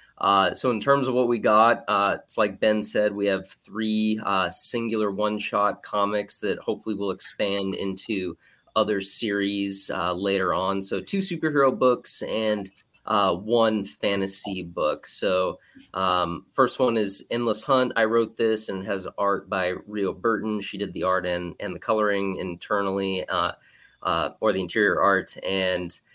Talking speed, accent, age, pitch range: 170 wpm, American, 30-49, 95-110 Hz